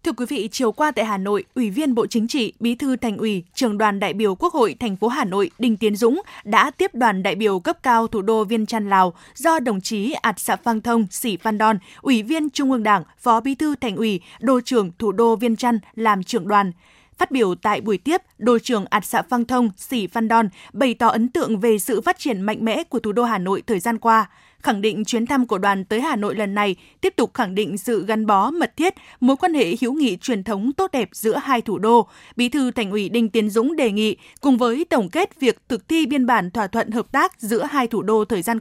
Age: 20-39